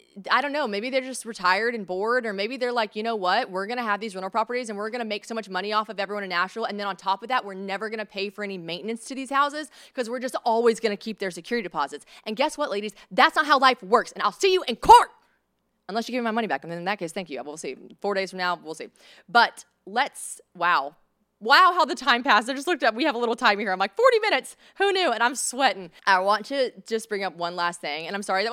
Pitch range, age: 185-240 Hz, 20-39